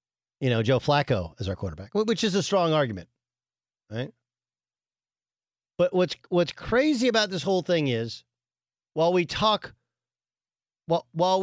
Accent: American